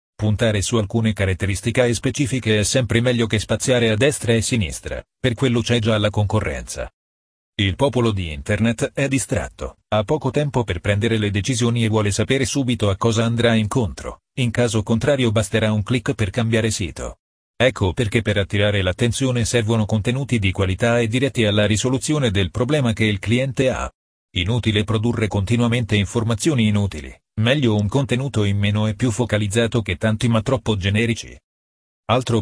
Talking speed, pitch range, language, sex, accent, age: 165 wpm, 105-125 Hz, Italian, male, native, 40-59